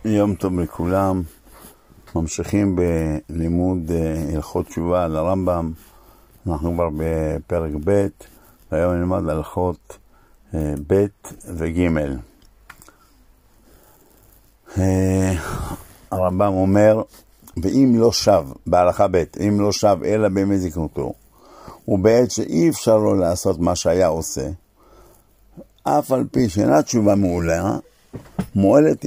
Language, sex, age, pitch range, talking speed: Hebrew, male, 60-79, 85-105 Hz, 100 wpm